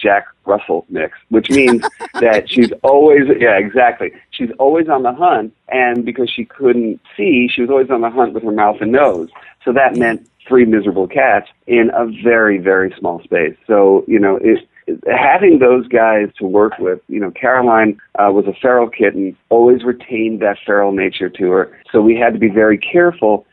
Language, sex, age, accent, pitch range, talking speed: English, male, 40-59, American, 100-130 Hz, 195 wpm